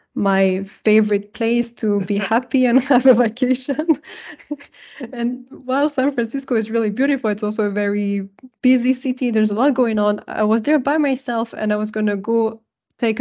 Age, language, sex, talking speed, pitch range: 20-39, English, female, 180 wpm, 210-255 Hz